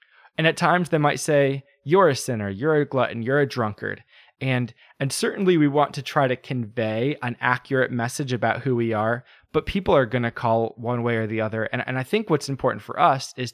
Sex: male